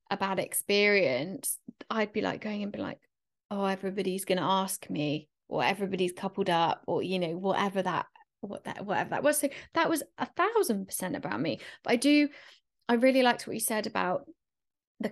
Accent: British